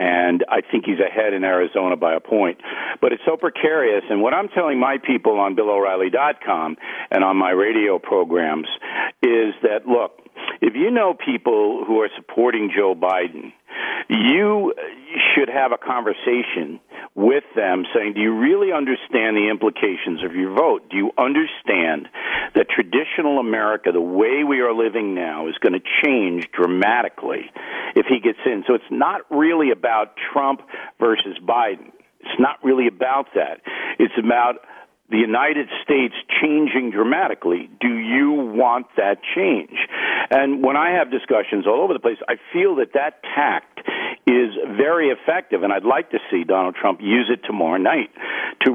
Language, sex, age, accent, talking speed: English, male, 50-69, American, 160 wpm